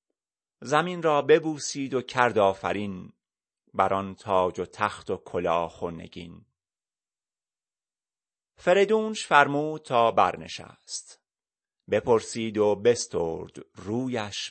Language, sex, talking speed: Persian, male, 85 wpm